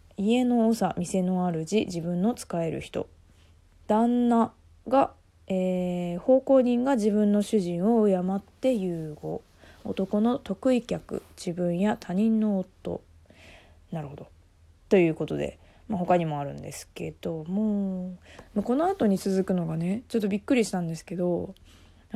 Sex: female